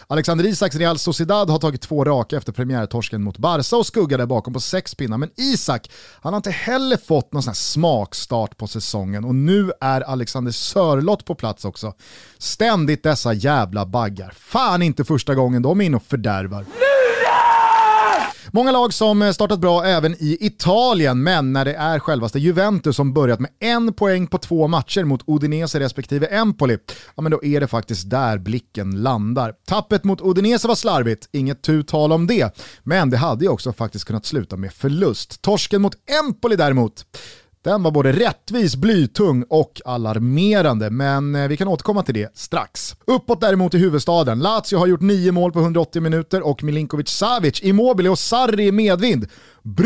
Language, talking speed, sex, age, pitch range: Swedish, 170 wpm, male, 30-49, 125-190 Hz